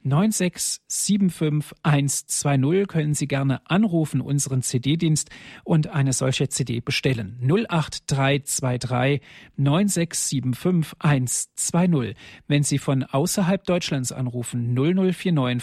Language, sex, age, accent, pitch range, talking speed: German, male, 40-59, German, 130-170 Hz, 80 wpm